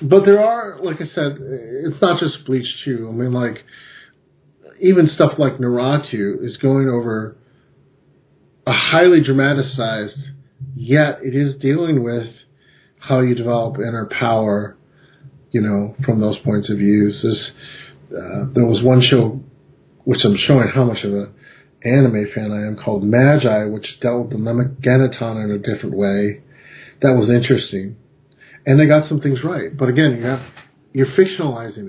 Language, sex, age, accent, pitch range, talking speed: English, male, 40-59, American, 115-140 Hz, 160 wpm